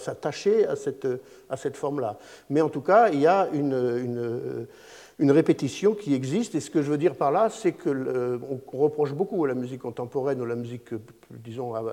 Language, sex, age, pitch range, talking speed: French, male, 50-69, 125-190 Hz, 200 wpm